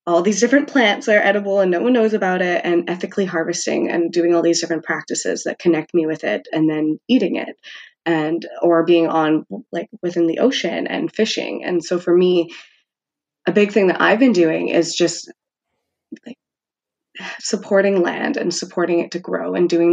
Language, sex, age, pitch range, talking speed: English, female, 20-39, 170-205 Hz, 195 wpm